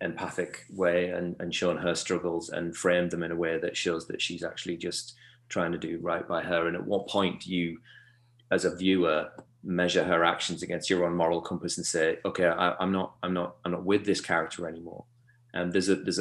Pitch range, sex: 85-105 Hz, male